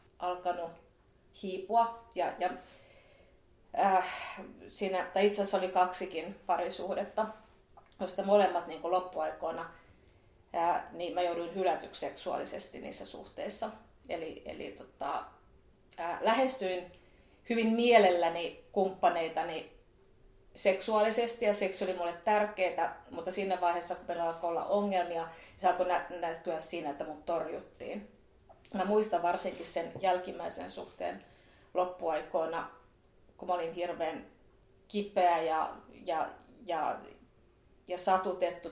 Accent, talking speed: native, 105 wpm